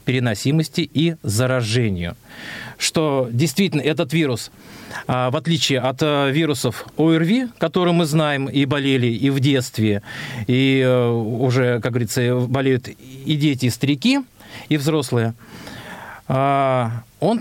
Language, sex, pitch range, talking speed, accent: Russian, male, 120-160 Hz, 110 wpm, native